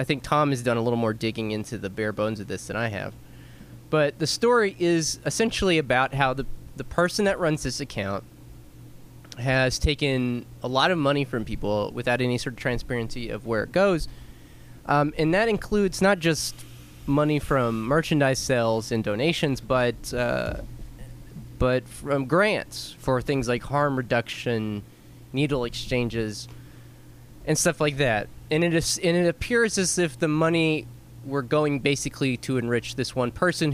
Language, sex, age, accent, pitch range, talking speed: English, male, 20-39, American, 120-155 Hz, 170 wpm